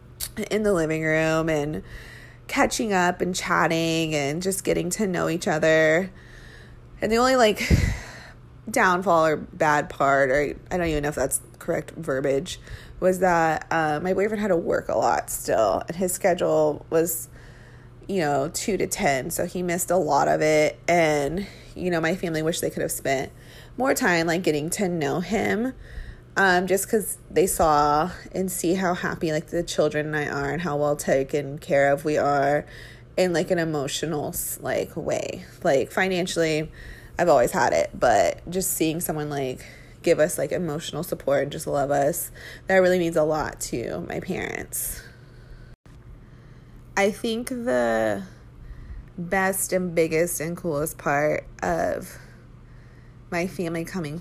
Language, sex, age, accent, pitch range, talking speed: English, female, 20-39, American, 140-180 Hz, 165 wpm